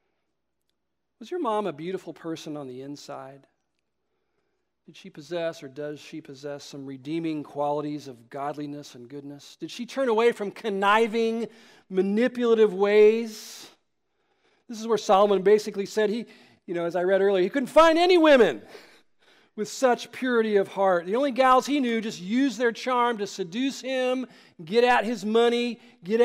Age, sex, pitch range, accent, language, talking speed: 40-59, male, 165-240 Hz, American, English, 160 wpm